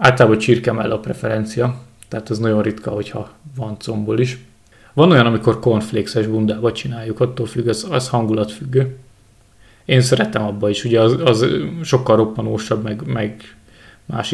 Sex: male